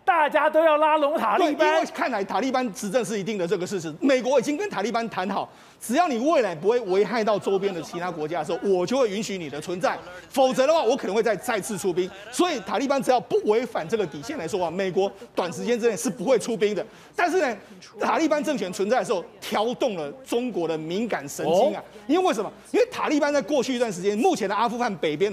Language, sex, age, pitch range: Chinese, male, 30-49, 195-275 Hz